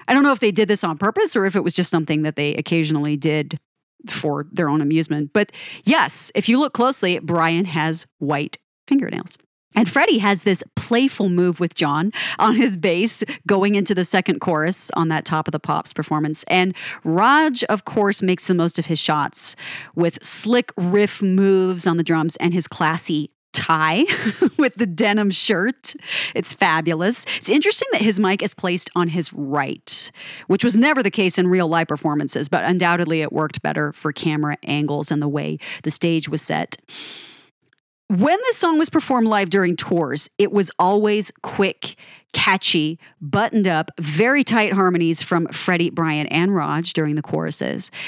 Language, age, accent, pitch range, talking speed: English, 30-49, American, 160-215 Hz, 180 wpm